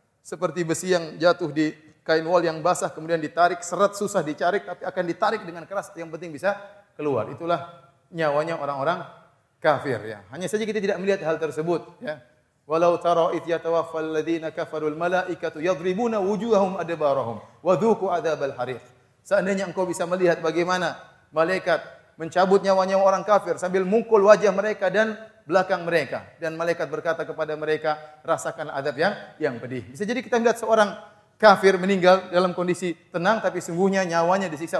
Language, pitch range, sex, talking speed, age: Indonesian, 150-185 Hz, male, 140 wpm, 30-49